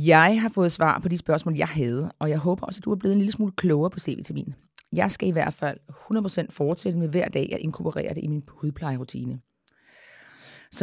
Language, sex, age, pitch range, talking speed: Danish, female, 30-49, 160-195 Hz, 220 wpm